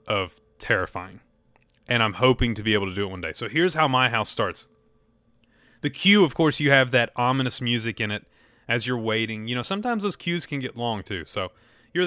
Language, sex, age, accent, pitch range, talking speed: English, male, 30-49, American, 115-140 Hz, 220 wpm